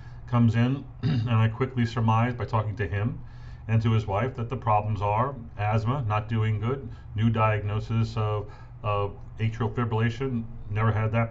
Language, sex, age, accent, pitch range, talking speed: English, male, 40-59, American, 110-125 Hz, 165 wpm